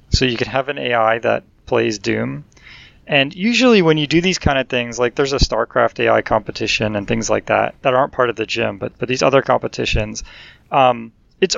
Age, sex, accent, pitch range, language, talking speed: 30-49, male, American, 115-140 Hz, English, 210 wpm